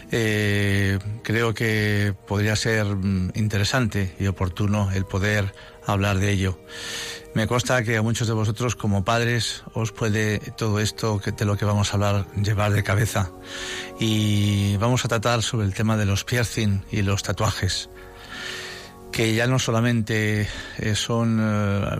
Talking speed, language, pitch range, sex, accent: 145 wpm, Spanish, 100-115 Hz, male, Spanish